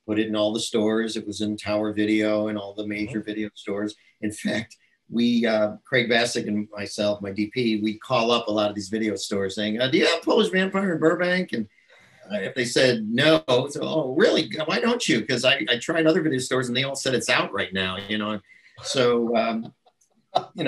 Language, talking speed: English, 220 wpm